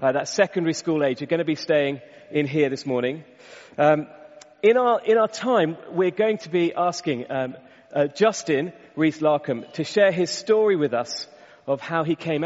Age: 40-59